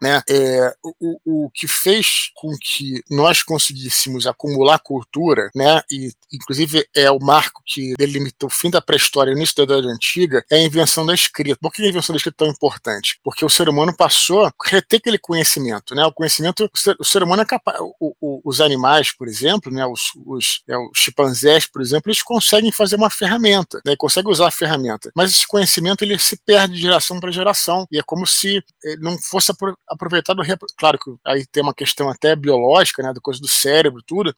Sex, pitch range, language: male, 145-185 Hz, Portuguese